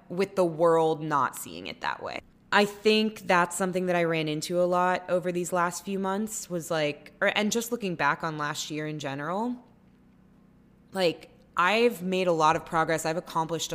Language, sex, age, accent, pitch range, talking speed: English, female, 20-39, American, 155-200 Hz, 190 wpm